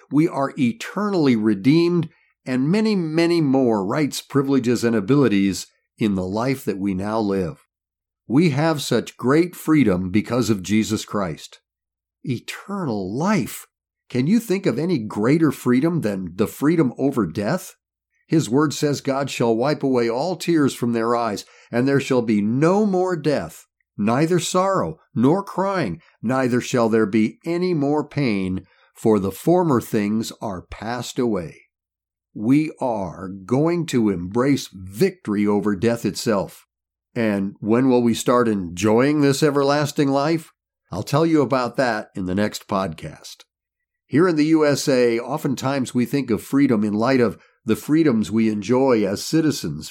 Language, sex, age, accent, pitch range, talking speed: English, male, 50-69, American, 110-155 Hz, 150 wpm